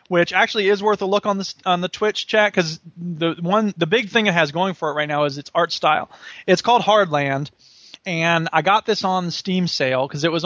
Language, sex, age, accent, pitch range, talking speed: English, male, 20-39, American, 155-195 Hz, 240 wpm